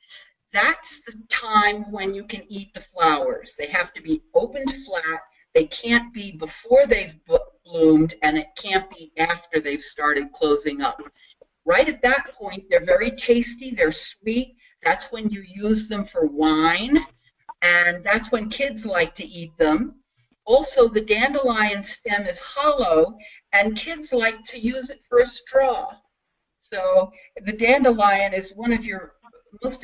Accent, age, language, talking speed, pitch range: American, 50-69, English, 155 wpm, 170-260 Hz